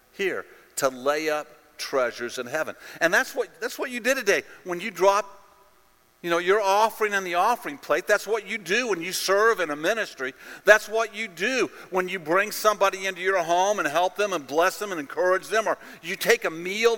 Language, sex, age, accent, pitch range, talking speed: English, male, 50-69, American, 170-230 Hz, 215 wpm